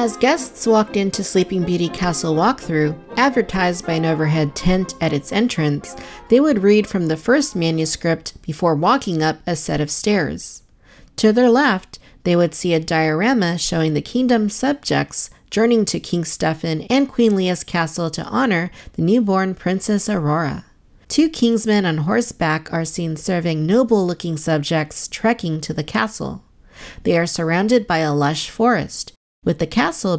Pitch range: 160-215 Hz